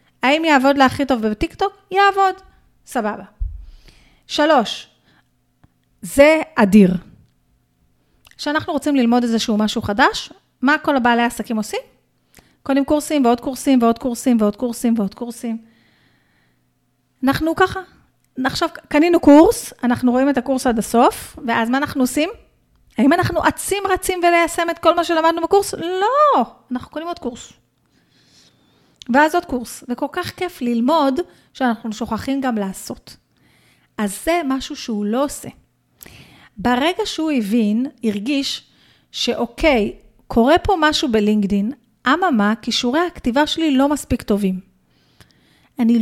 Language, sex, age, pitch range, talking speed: Hebrew, female, 30-49, 235-315 Hz, 125 wpm